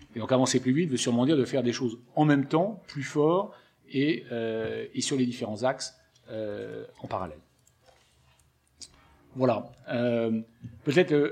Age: 40-59